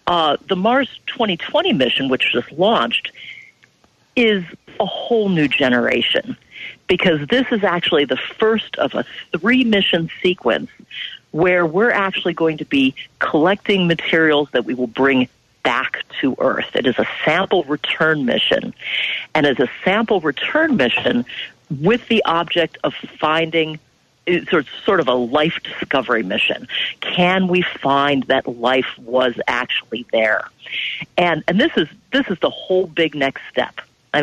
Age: 40-59